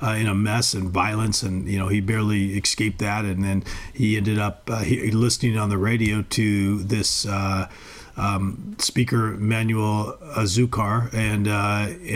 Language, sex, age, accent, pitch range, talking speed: English, male, 40-59, American, 100-115 Hz, 165 wpm